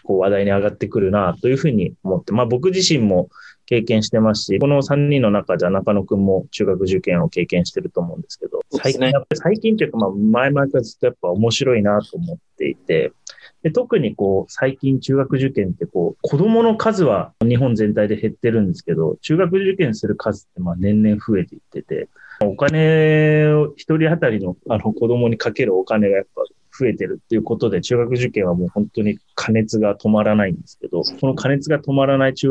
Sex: male